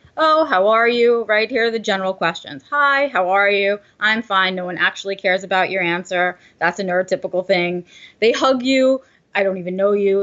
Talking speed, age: 205 wpm, 20-39